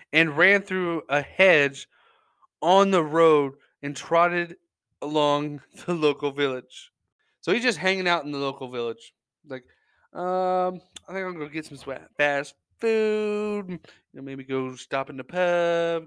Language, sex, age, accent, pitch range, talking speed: English, male, 20-39, American, 130-170 Hz, 155 wpm